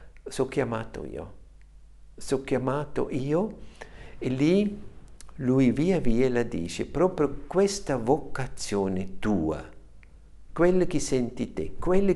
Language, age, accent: Italian, 60-79, native